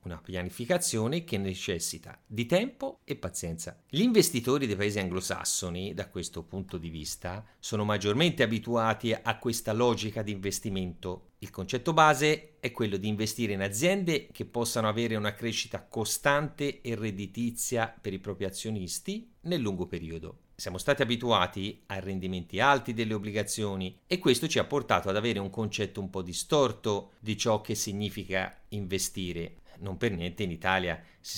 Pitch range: 95-130 Hz